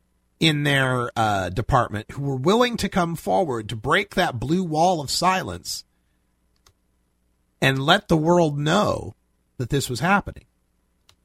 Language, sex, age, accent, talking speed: English, male, 40-59, American, 140 wpm